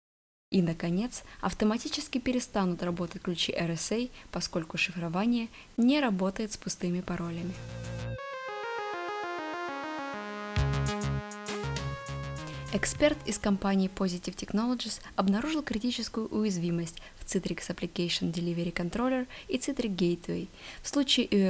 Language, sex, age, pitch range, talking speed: Russian, female, 20-39, 180-240 Hz, 90 wpm